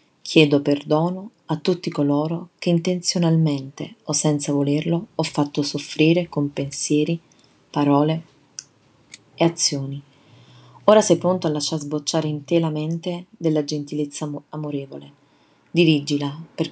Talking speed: 120 wpm